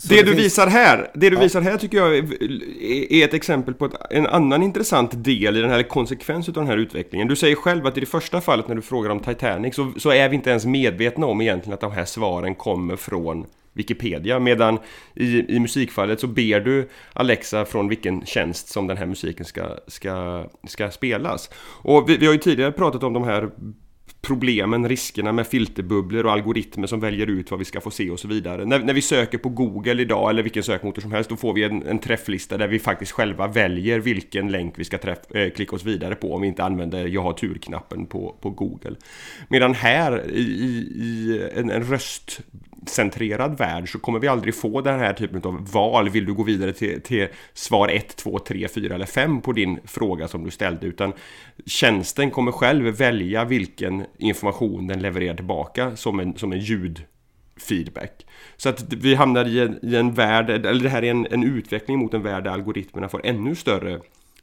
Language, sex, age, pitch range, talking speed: Swedish, male, 30-49, 100-130 Hz, 200 wpm